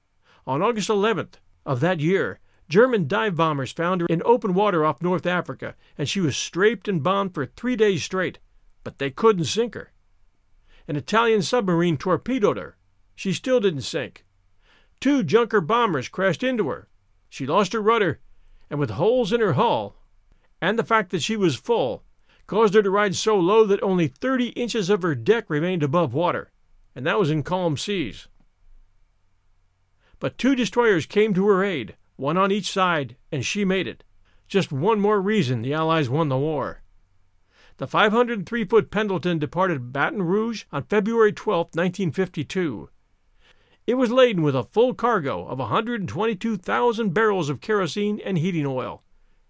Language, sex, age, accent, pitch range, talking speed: English, male, 50-69, American, 145-220 Hz, 165 wpm